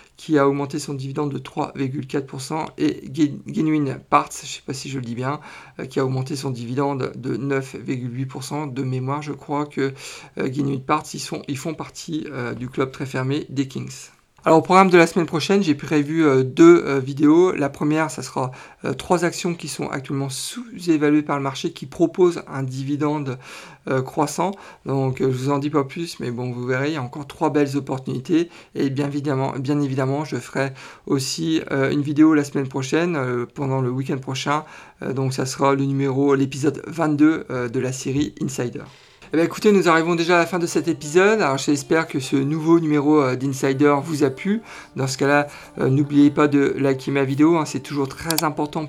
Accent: French